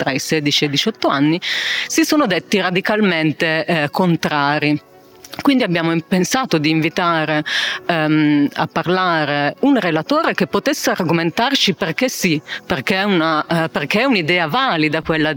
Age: 40-59